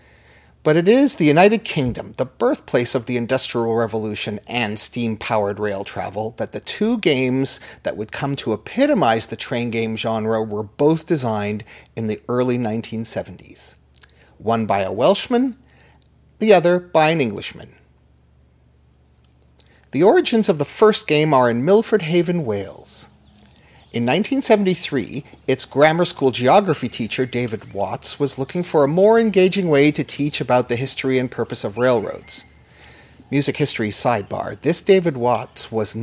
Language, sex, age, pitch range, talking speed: English, male, 40-59, 110-150 Hz, 145 wpm